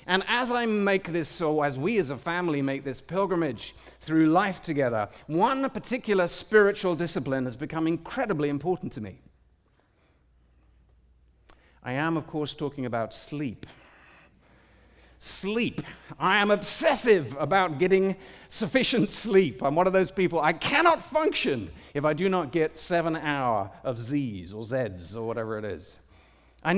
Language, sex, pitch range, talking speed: English, male, 130-185 Hz, 150 wpm